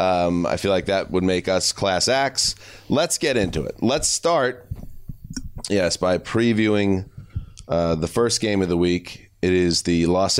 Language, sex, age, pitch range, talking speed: English, male, 30-49, 95-115 Hz, 175 wpm